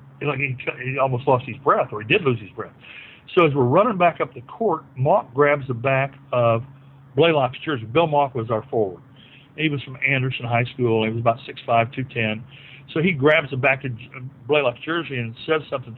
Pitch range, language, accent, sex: 125-150 Hz, English, American, male